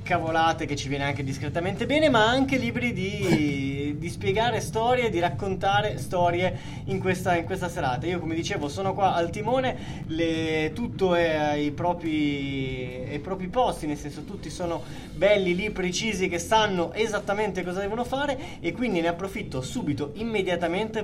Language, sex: Italian, male